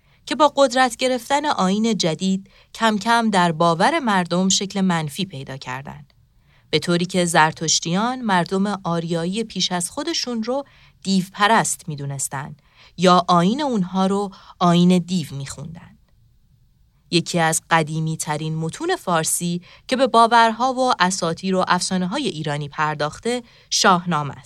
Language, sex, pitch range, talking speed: Persian, female, 155-205 Hz, 130 wpm